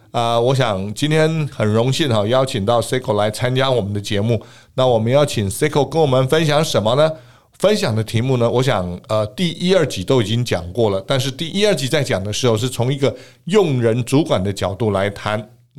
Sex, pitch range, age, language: male, 110-145 Hz, 50-69, Chinese